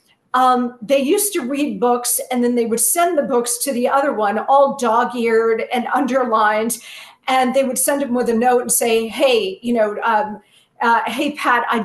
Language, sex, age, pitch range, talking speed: English, female, 50-69, 225-275 Hz, 195 wpm